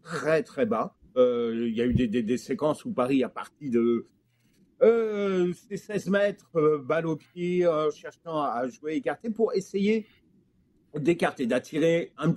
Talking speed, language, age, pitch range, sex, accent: 175 wpm, French, 50-69, 150-200 Hz, male, French